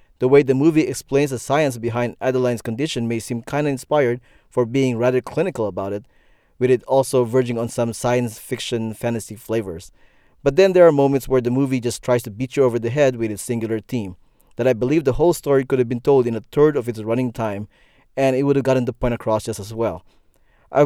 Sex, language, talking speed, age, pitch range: male, English, 230 wpm, 20-39, 115-135 Hz